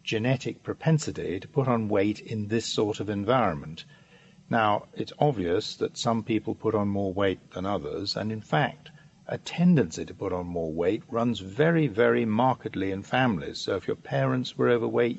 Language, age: English, 50-69